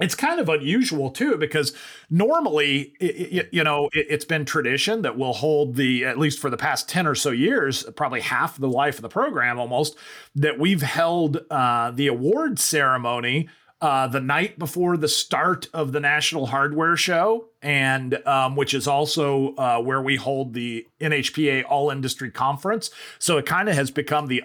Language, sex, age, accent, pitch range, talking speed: English, male, 30-49, American, 140-165 Hz, 180 wpm